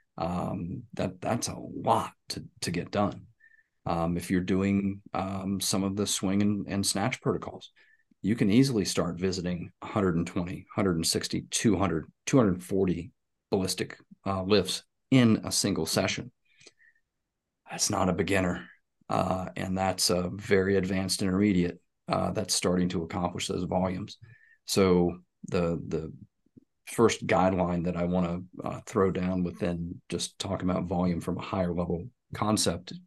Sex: male